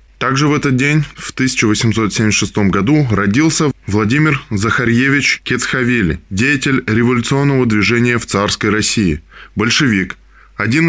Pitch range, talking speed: 105-135 Hz, 105 wpm